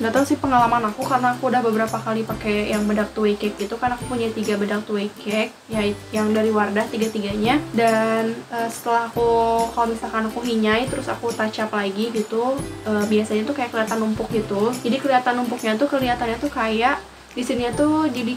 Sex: female